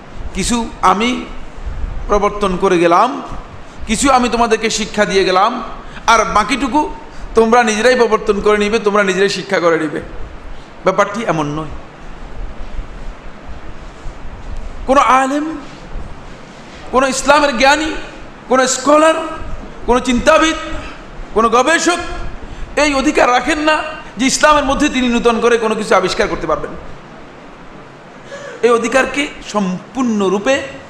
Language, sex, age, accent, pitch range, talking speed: Bengali, male, 50-69, native, 205-275 Hz, 110 wpm